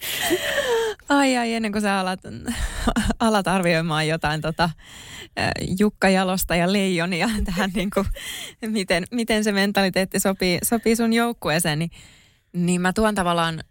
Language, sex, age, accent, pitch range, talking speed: Finnish, female, 20-39, native, 150-195 Hz, 125 wpm